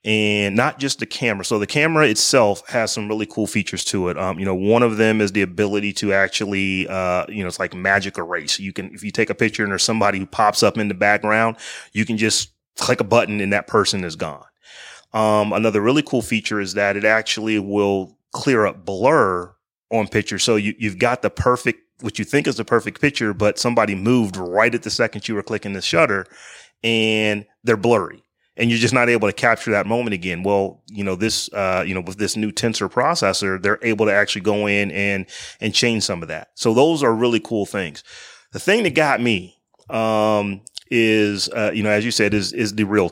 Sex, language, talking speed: male, English, 225 wpm